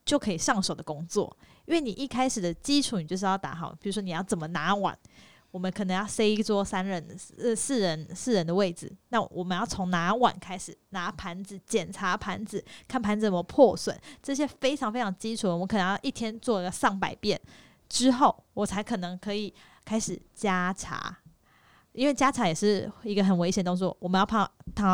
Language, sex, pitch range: Chinese, female, 180-225 Hz